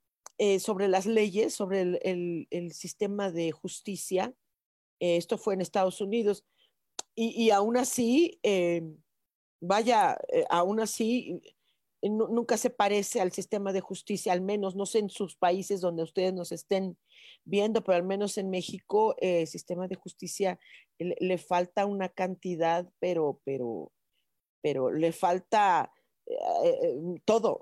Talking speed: 150 wpm